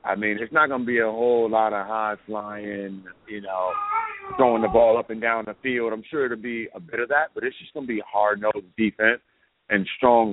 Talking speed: 230 wpm